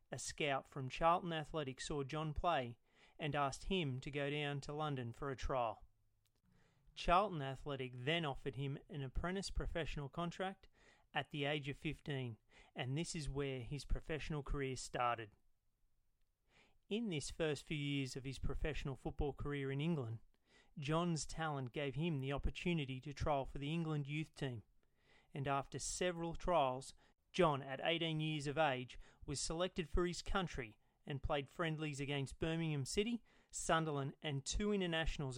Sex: male